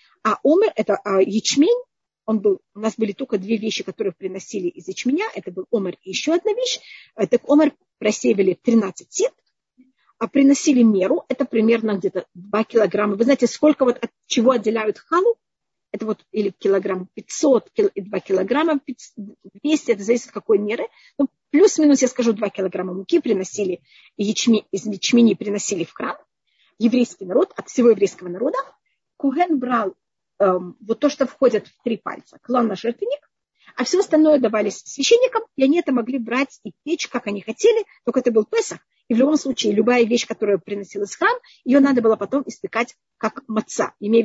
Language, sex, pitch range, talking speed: Russian, female, 205-280 Hz, 175 wpm